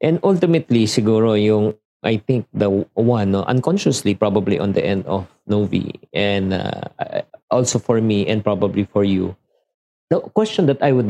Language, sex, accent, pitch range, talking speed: Filipino, male, native, 100-130 Hz, 160 wpm